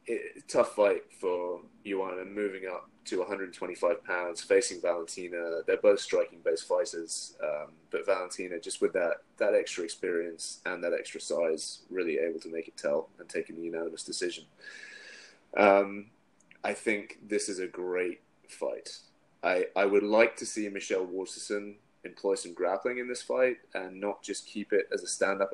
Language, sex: English, male